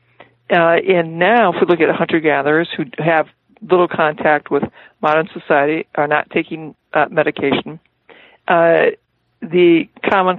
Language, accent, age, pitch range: English, American, 60-79, 155-195 Hz